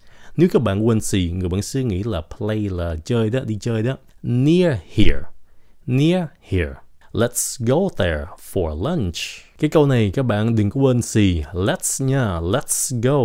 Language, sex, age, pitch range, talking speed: Vietnamese, male, 20-39, 95-130 Hz, 175 wpm